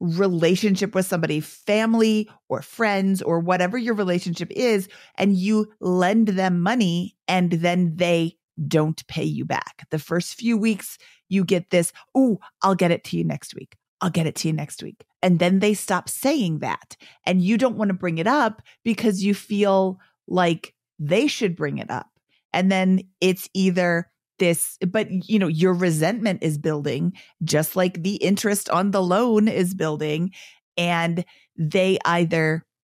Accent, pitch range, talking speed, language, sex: American, 170-205 Hz, 170 wpm, English, female